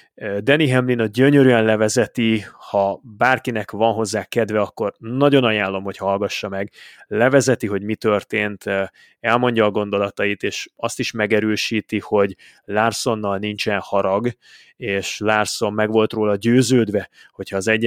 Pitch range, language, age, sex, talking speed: 105-125 Hz, Hungarian, 20-39, male, 135 wpm